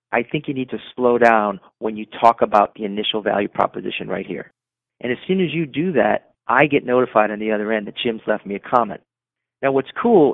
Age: 40-59